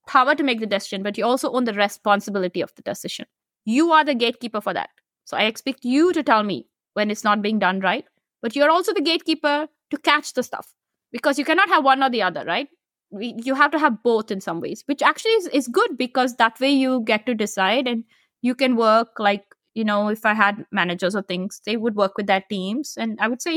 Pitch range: 210-275 Hz